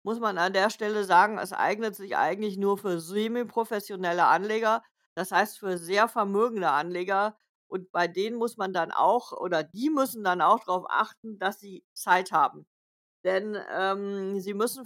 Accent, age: German, 50-69